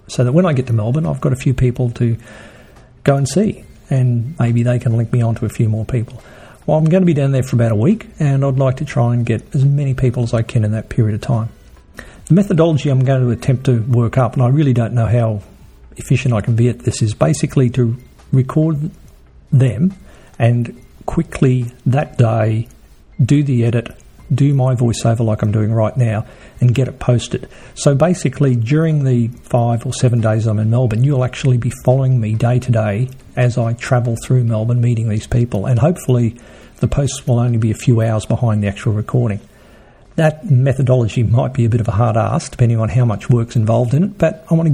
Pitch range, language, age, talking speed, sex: 115-135 Hz, English, 50-69, 220 wpm, male